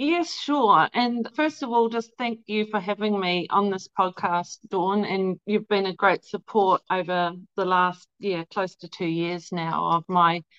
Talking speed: 185 wpm